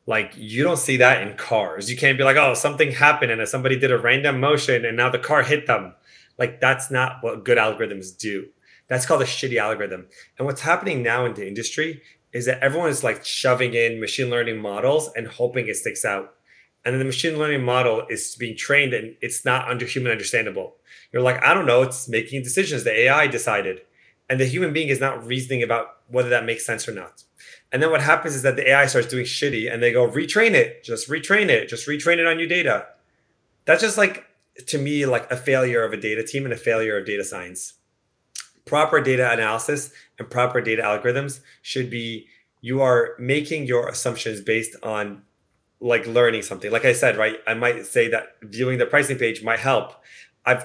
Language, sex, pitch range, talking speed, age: English, male, 120-145 Hz, 210 wpm, 20-39